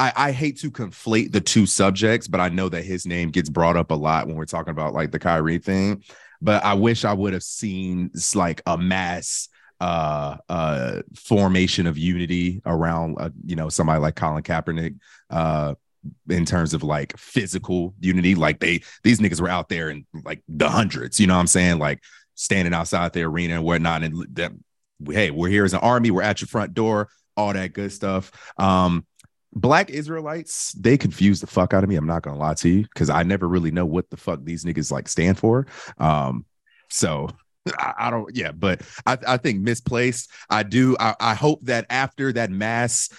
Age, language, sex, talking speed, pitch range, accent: 30-49, English, male, 200 wpm, 85-110 Hz, American